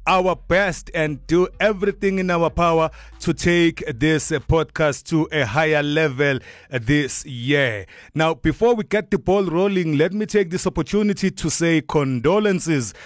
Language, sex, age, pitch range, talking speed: English, male, 30-49, 125-155 Hz, 150 wpm